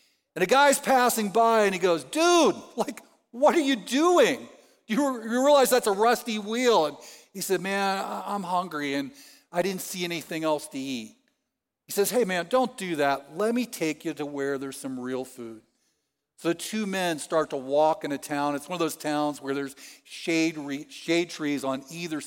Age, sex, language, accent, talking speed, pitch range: 50-69, male, English, American, 200 wpm, 140-195 Hz